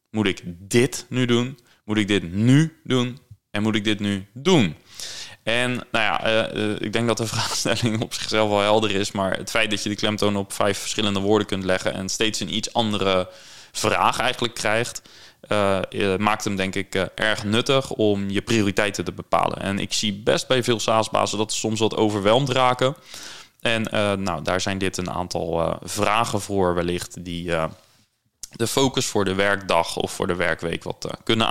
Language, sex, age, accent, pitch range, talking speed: Dutch, male, 20-39, Dutch, 100-120 Hz, 195 wpm